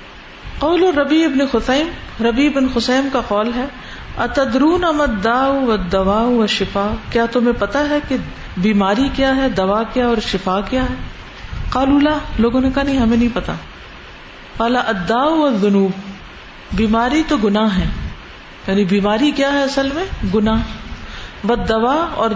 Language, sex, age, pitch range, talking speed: Urdu, female, 50-69, 200-265 Hz, 130 wpm